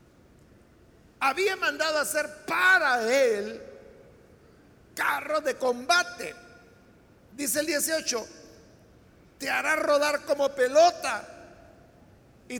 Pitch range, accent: 230-300 Hz, Mexican